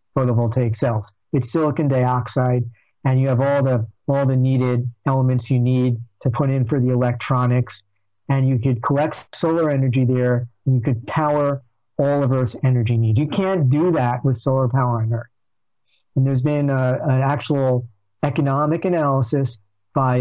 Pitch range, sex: 120-140 Hz, male